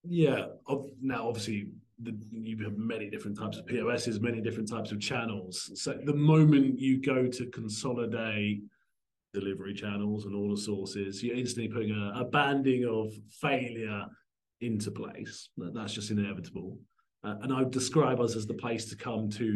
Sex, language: male, English